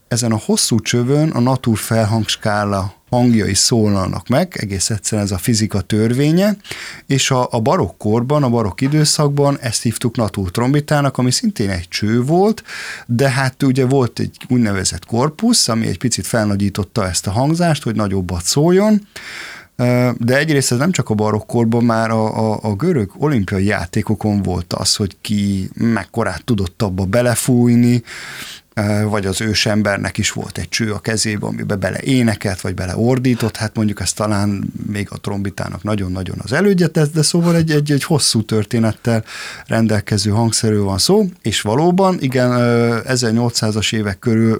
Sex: male